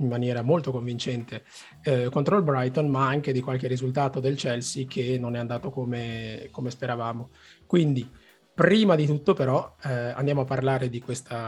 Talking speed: 170 wpm